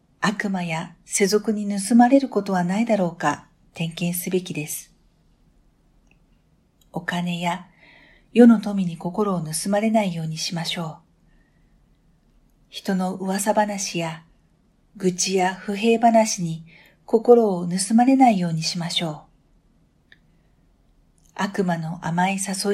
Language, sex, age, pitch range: Japanese, female, 50-69, 170-205 Hz